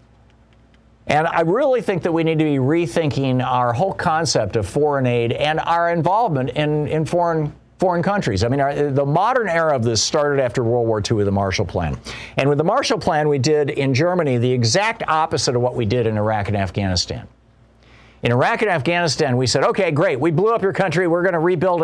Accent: American